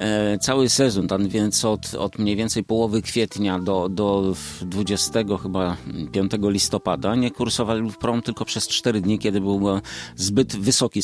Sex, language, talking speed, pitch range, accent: male, Polish, 145 wpm, 95-115 Hz, native